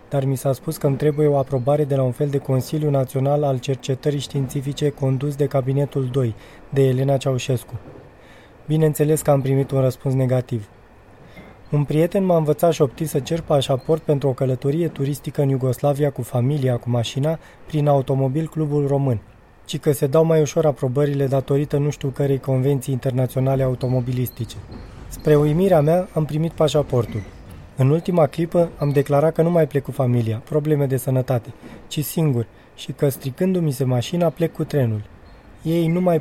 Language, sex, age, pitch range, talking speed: Romanian, male, 20-39, 130-155 Hz, 170 wpm